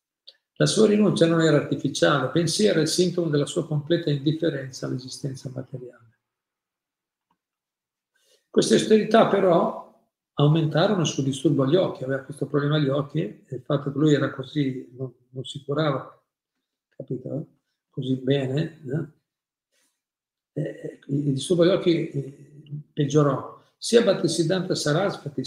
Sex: male